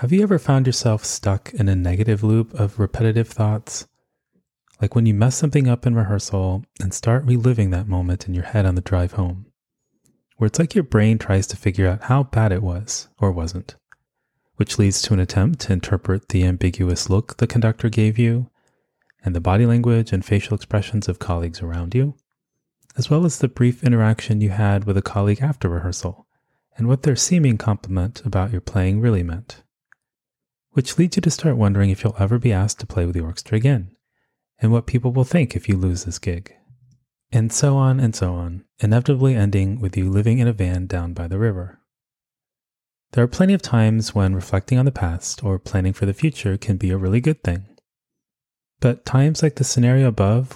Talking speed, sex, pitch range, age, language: 200 wpm, male, 95-125 Hz, 30-49, English